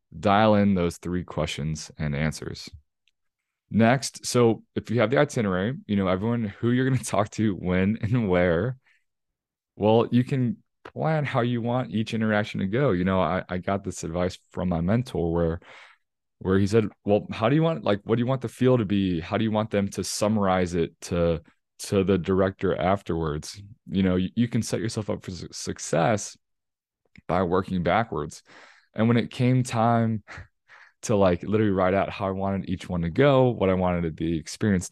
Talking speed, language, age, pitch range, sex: 195 wpm, English, 20-39, 95-115 Hz, male